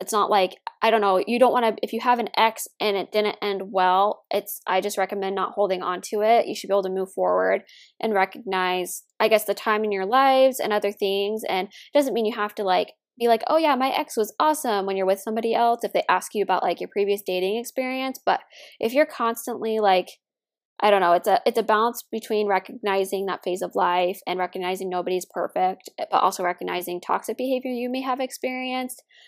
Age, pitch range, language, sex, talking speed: 10-29, 195-235 Hz, English, female, 230 wpm